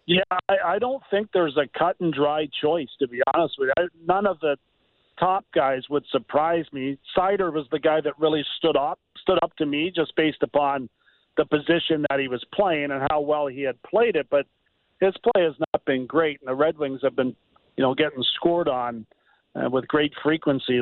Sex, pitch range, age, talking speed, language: male, 140-180 Hz, 50-69, 215 wpm, English